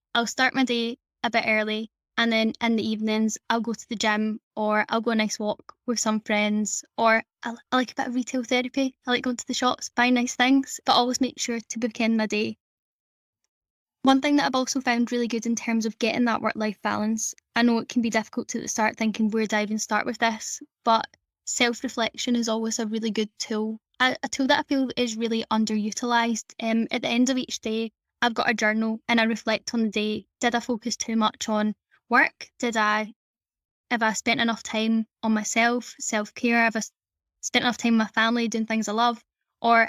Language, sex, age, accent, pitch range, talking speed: English, female, 10-29, British, 220-245 Hz, 220 wpm